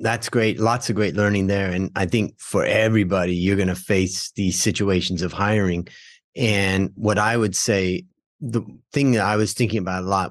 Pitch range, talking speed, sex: 95-120 Hz, 200 wpm, male